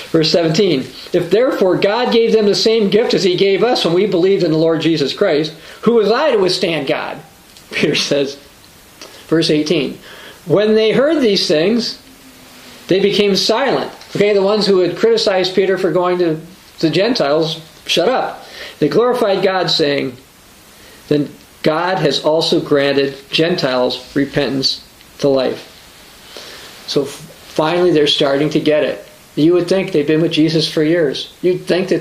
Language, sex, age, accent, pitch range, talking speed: English, male, 50-69, American, 145-180 Hz, 160 wpm